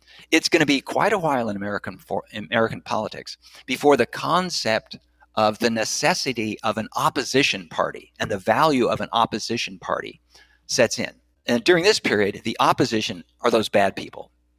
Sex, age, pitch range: male, 50-69, 105-135 Hz